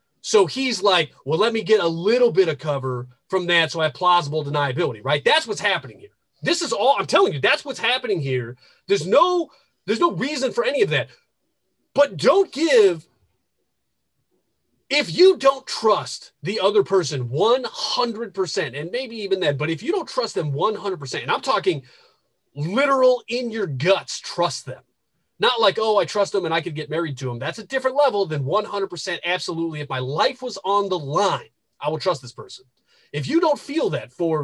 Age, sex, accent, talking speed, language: 30-49, male, American, 195 wpm, English